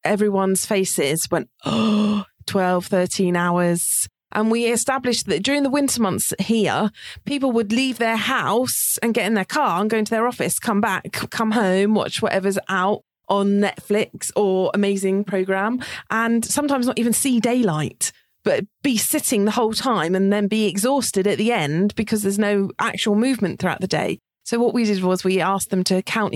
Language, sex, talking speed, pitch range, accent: English, female, 180 wpm, 190-240 Hz, British